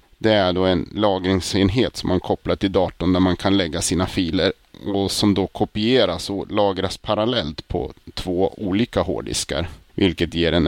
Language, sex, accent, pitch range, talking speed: Swedish, male, Norwegian, 90-105 Hz, 170 wpm